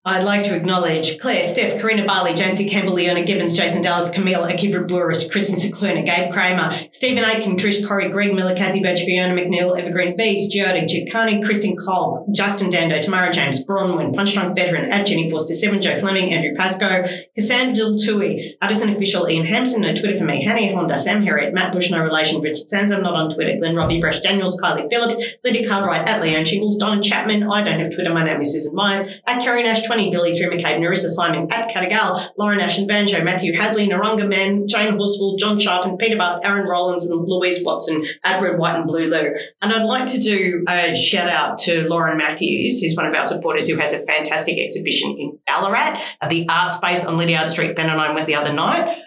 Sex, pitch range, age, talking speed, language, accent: female, 170-200 Hz, 40-59, 205 wpm, English, Australian